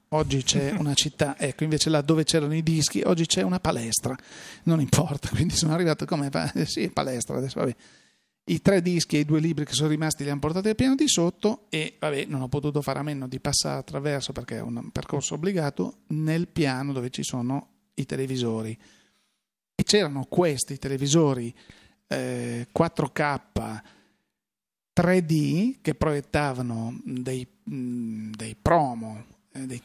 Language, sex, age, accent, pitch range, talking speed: Italian, male, 40-59, native, 130-160 Hz, 160 wpm